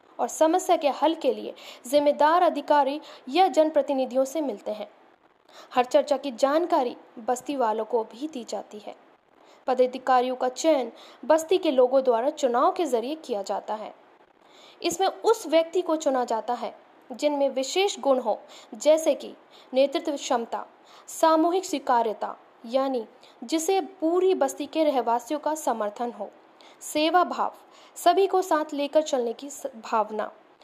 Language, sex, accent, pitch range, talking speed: Hindi, female, native, 255-320 Hz, 140 wpm